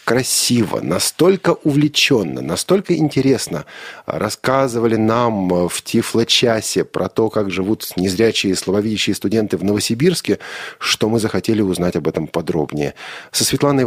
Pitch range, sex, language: 95-160 Hz, male, Russian